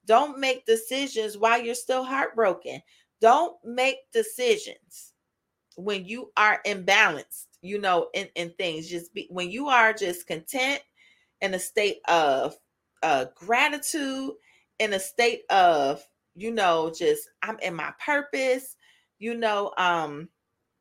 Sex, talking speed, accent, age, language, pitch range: female, 135 wpm, American, 30-49, English, 205-265 Hz